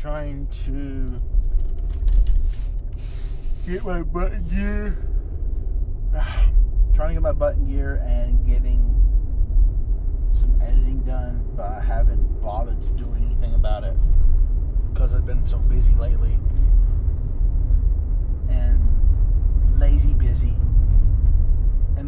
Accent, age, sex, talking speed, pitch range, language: American, 30-49, male, 100 wpm, 75-110 Hz, English